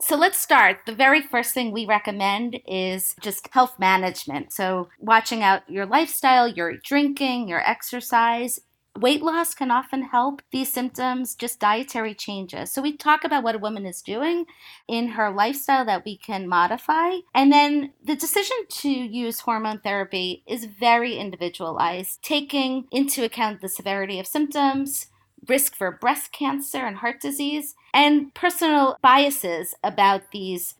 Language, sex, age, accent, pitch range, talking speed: English, female, 40-59, American, 210-280 Hz, 150 wpm